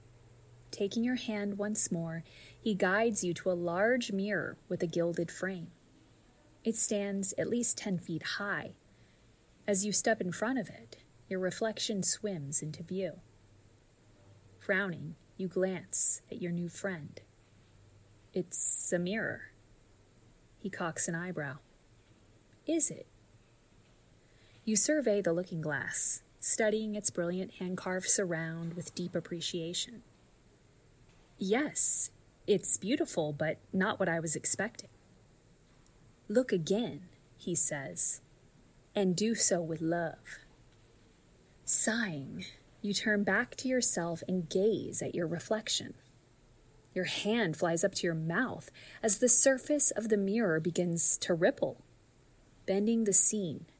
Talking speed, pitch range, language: 125 wpm, 145-205 Hz, English